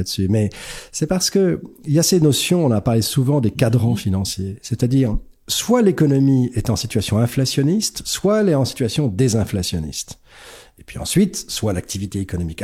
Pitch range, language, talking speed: 105-160 Hz, French, 170 wpm